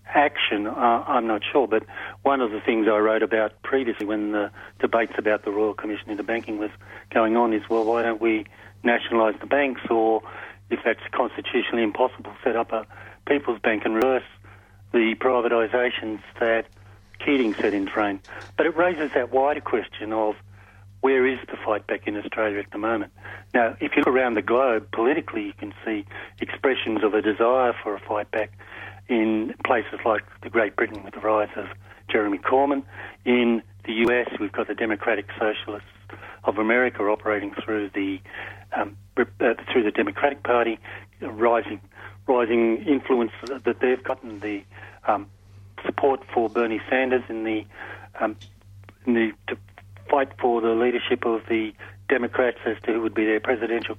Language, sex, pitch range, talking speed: English, male, 100-115 Hz, 170 wpm